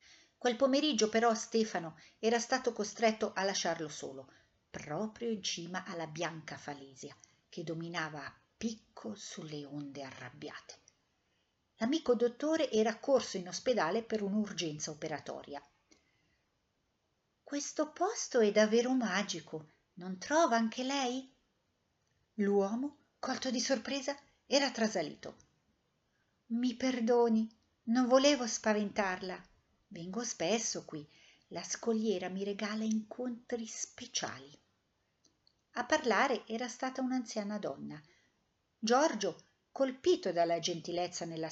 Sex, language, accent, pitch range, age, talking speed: female, Italian, native, 170-240 Hz, 50-69, 105 wpm